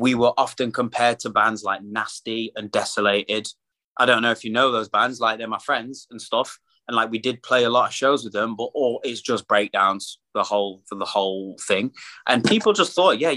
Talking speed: 230 wpm